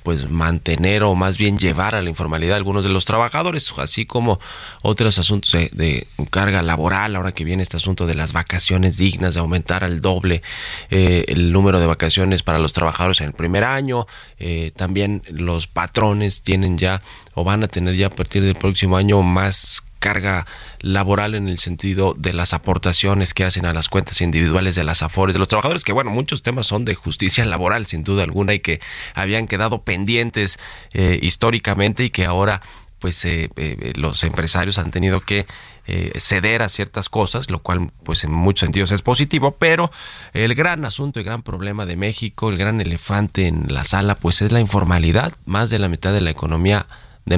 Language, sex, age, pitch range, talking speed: Spanish, male, 30-49, 90-105 Hz, 195 wpm